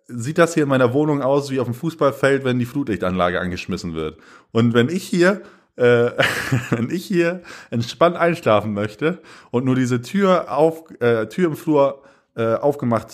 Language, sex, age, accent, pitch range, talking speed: German, male, 30-49, German, 110-145 Hz, 175 wpm